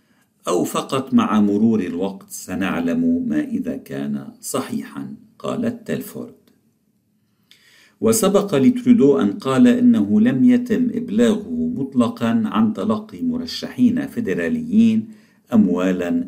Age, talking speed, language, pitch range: 50-69, 95 wpm, Arabic, 220-245 Hz